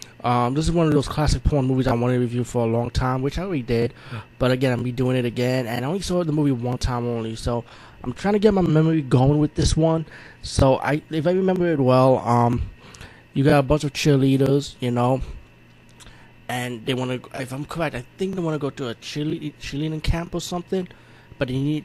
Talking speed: 235 wpm